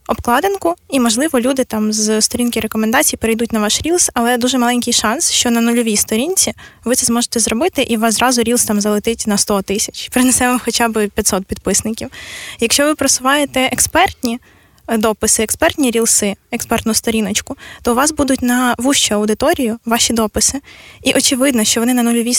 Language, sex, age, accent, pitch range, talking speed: Ukrainian, female, 20-39, native, 220-255 Hz, 165 wpm